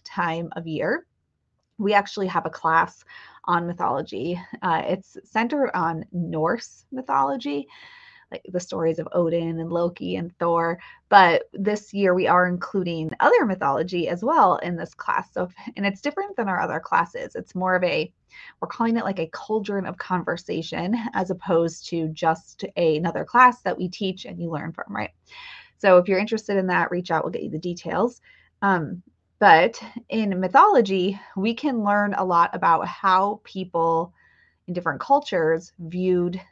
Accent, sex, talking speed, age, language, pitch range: American, female, 170 wpm, 20-39, English, 170-215 Hz